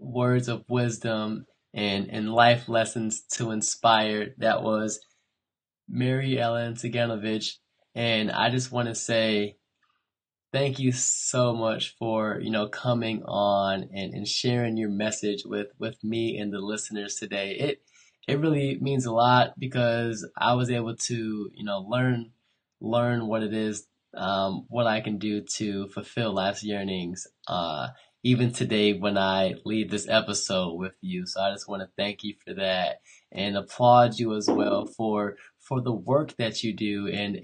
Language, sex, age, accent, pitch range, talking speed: English, male, 20-39, American, 105-120 Hz, 160 wpm